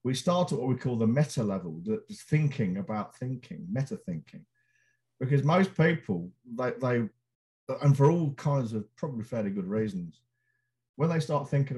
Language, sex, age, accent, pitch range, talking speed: English, male, 50-69, British, 120-170 Hz, 175 wpm